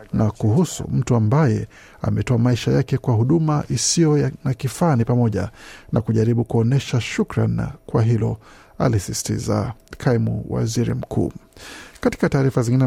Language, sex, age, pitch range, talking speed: Swahili, male, 50-69, 120-145 Hz, 120 wpm